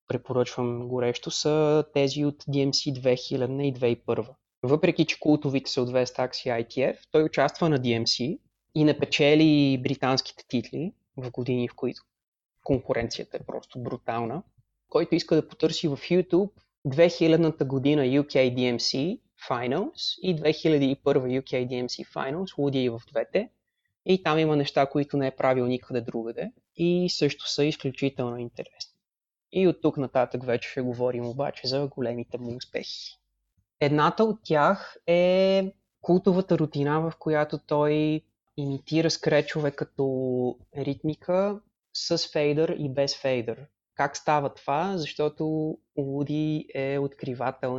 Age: 20-39